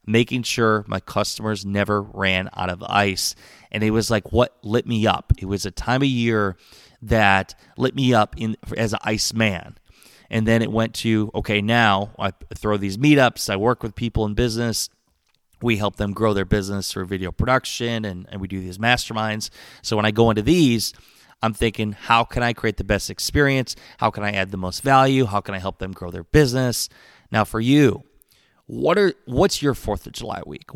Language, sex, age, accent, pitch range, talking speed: English, male, 20-39, American, 100-120 Hz, 205 wpm